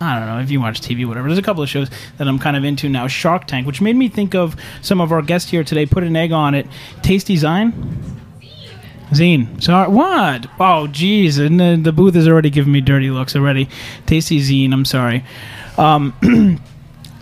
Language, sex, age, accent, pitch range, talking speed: English, male, 30-49, American, 140-185 Hz, 215 wpm